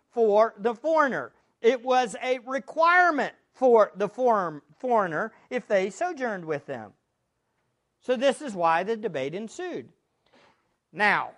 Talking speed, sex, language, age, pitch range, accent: 120 wpm, male, English, 50-69, 200-300 Hz, American